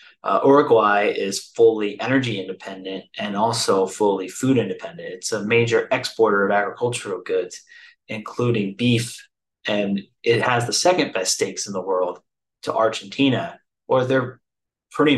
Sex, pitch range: male, 105-140 Hz